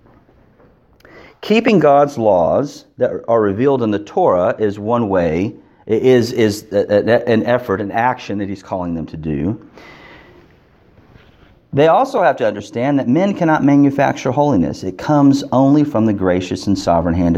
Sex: male